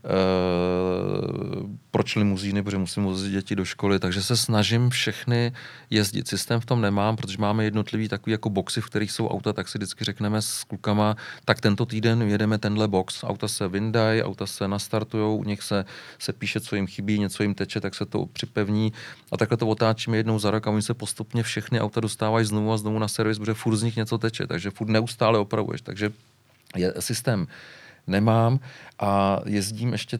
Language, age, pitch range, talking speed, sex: Czech, 40-59, 100-115 Hz, 190 wpm, male